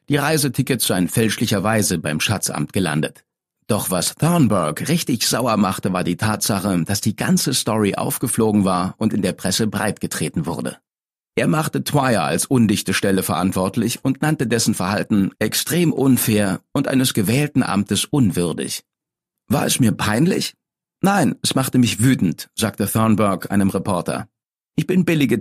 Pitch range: 100-135 Hz